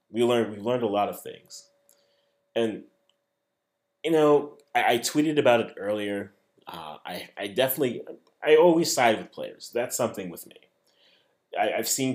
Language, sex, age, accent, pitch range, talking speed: English, male, 30-49, American, 95-125 Hz, 155 wpm